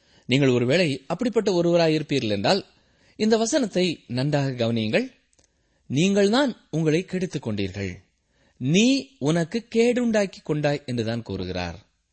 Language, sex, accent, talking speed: Tamil, male, native, 105 wpm